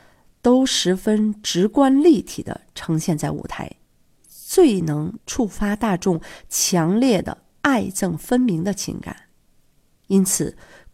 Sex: female